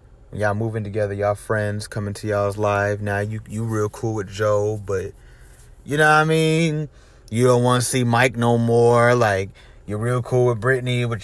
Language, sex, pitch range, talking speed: English, male, 100-120 Hz, 200 wpm